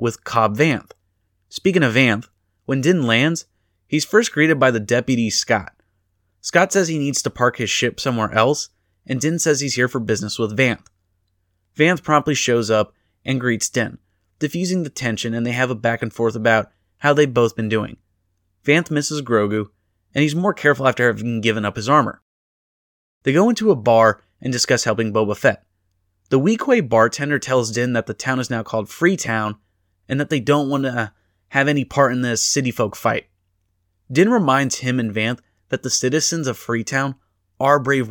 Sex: male